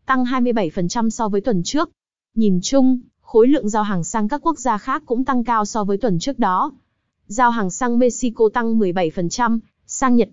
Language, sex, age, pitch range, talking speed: Vietnamese, female, 20-39, 200-250 Hz, 190 wpm